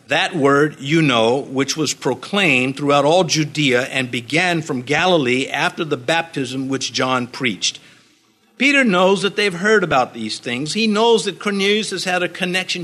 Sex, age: male, 50-69